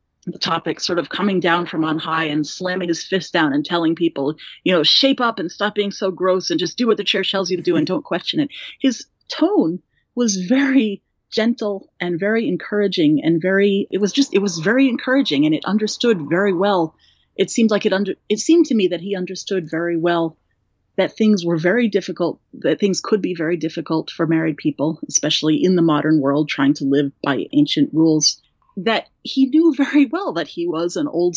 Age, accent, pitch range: 30-49, American, 170-240 Hz